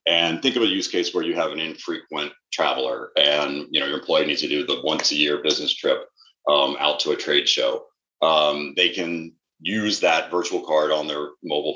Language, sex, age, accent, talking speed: English, male, 30-49, American, 215 wpm